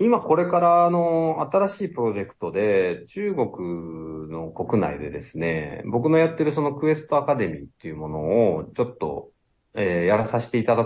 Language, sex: Japanese, male